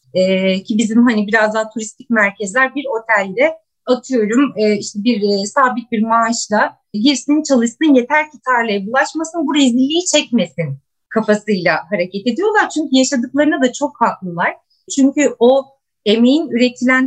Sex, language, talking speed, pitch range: female, Turkish, 135 wpm, 215-275 Hz